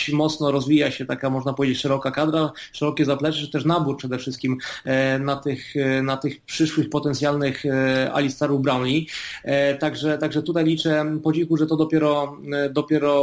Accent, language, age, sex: native, Polish, 30-49, male